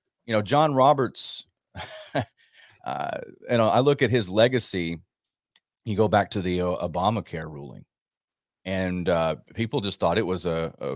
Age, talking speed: 30-49, 160 wpm